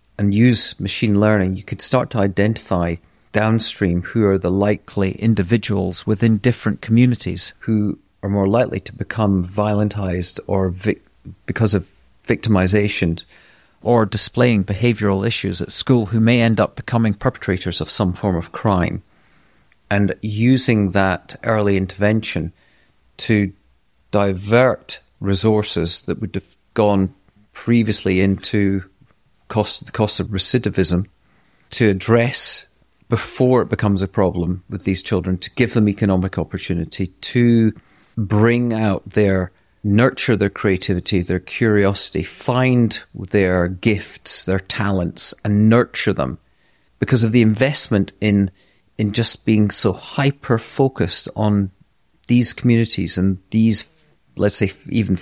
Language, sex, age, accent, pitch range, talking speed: English, male, 40-59, British, 95-115 Hz, 125 wpm